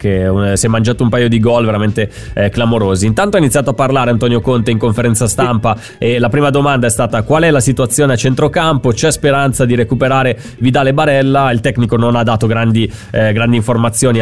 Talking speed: 205 wpm